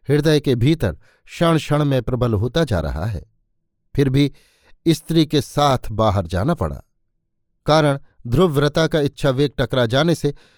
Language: Hindi